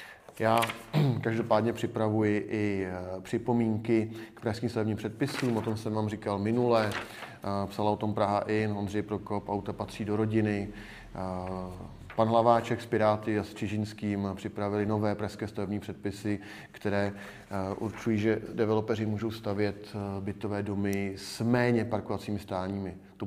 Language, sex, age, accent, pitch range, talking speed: Czech, male, 30-49, native, 100-110 Hz, 130 wpm